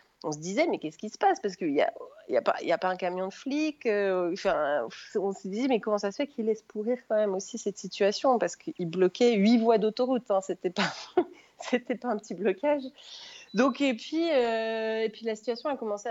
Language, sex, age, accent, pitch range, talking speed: French, female, 30-49, French, 165-230 Hz, 245 wpm